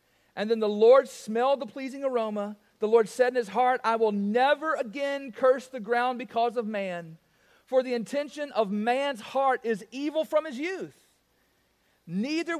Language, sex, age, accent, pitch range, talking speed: English, male, 40-59, American, 215-270 Hz, 170 wpm